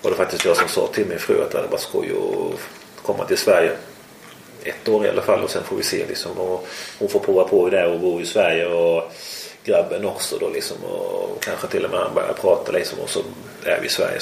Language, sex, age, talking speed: Swedish, male, 30-49, 245 wpm